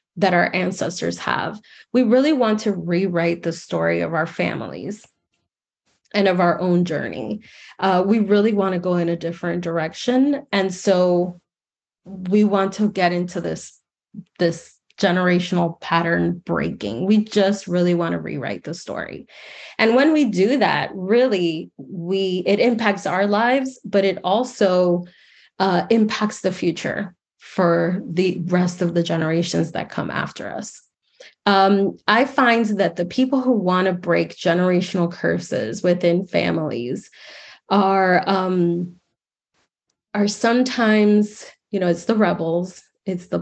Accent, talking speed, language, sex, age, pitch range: American, 140 wpm, English, female, 20-39, 175-210 Hz